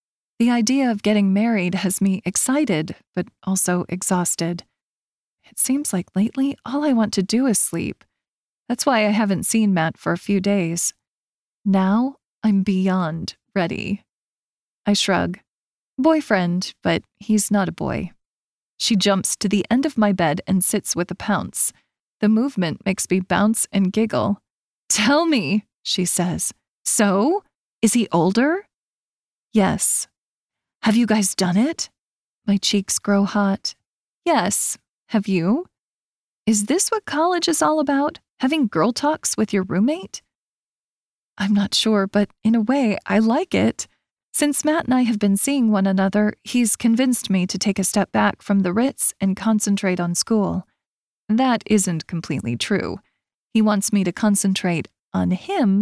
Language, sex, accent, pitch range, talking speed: English, female, American, 190-235 Hz, 155 wpm